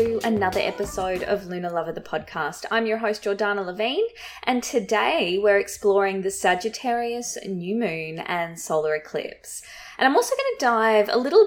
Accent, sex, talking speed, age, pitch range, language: Australian, female, 160 wpm, 20-39, 180-240 Hz, English